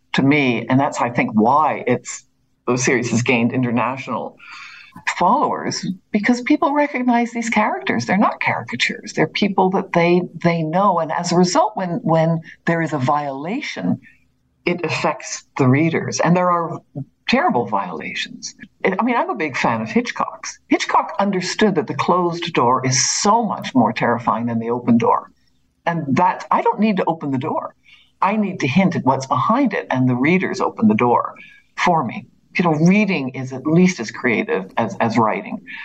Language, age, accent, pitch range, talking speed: English, 60-79, American, 135-195 Hz, 180 wpm